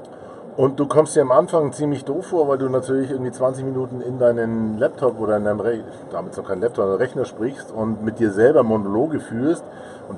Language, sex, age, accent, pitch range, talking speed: German, male, 40-59, German, 110-125 Hz, 175 wpm